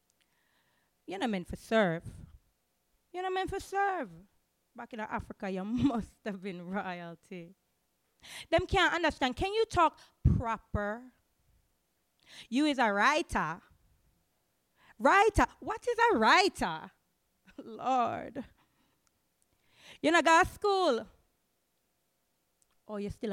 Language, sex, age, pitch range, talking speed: English, female, 20-39, 195-320 Hz, 110 wpm